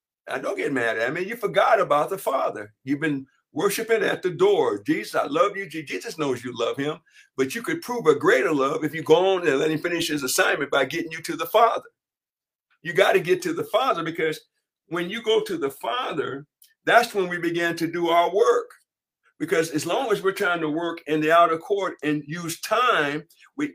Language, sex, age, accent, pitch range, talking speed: English, male, 60-79, American, 155-225 Hz, 220 wpm